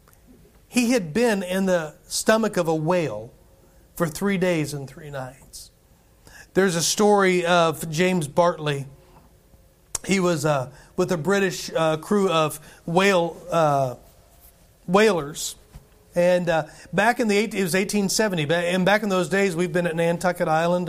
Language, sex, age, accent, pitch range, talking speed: English, male, 40-59, American, 170-200 Hz, 145 wpm